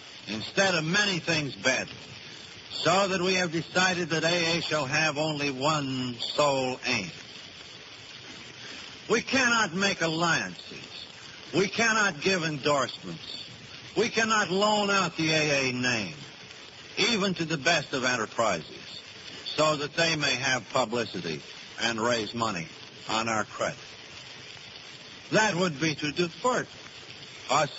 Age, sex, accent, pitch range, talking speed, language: 60-79, male, American, 130-175 Hz, 125 wpm, English